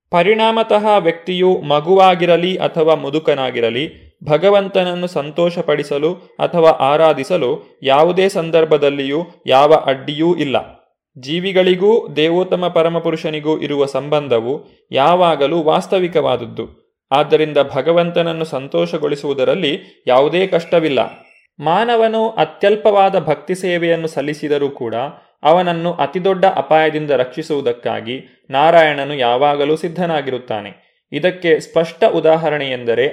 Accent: native